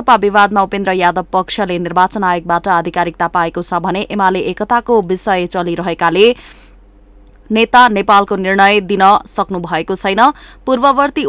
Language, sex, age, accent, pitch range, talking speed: English, female, 20-39, Indian, 180-215 Hz, 155 wpm